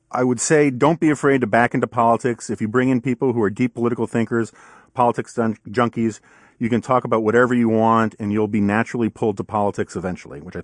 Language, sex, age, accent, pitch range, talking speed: English, male, 40-59, American, 105-120 Hz, 220 wpm